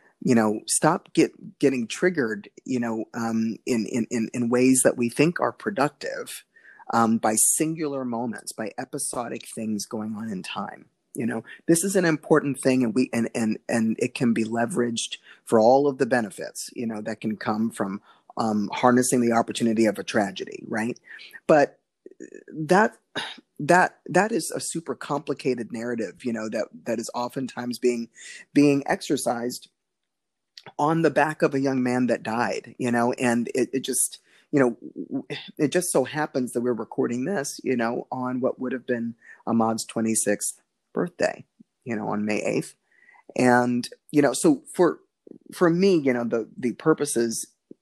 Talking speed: 170 wpm